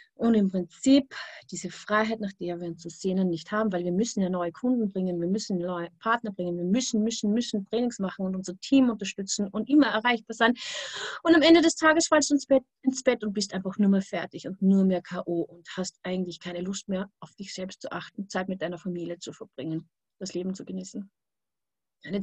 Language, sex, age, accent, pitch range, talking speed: German, female, 30-49, German, 190-255 Hz, 220 wpm